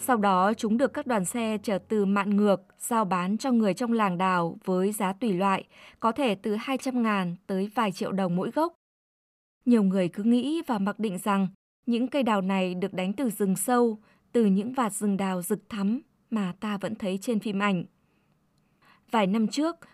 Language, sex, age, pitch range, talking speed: Vietnamese, female, 20-39, 195-240 Hz, 200 wpm